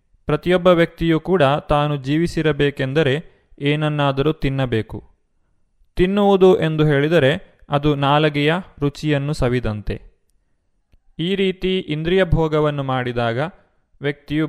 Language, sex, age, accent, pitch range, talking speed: Kannada, male, 20-39, native, 125-170 Hz, 80 wpm